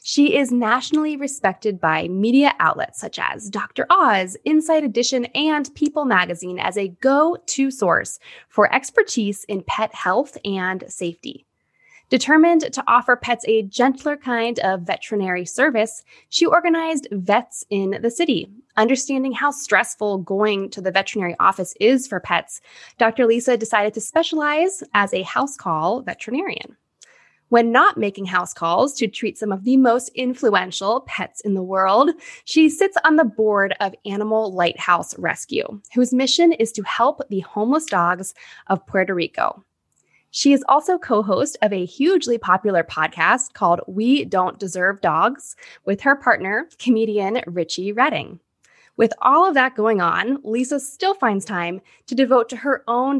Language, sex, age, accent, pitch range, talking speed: English, female, 10-29, American, 195-275 Hz, 150 wpm